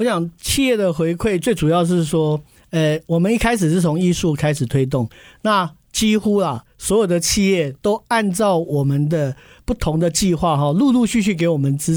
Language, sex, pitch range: Chinese, male, 155-215 Hz